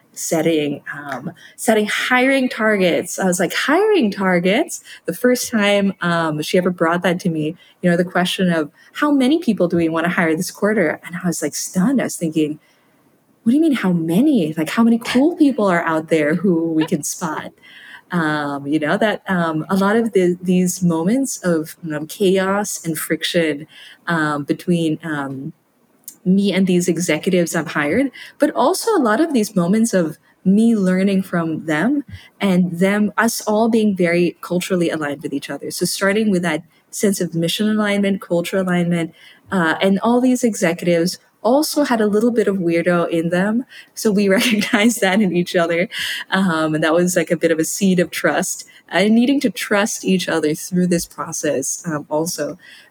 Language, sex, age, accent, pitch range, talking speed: English, female, 20-39, American, 165-215 Hz, 185 wpm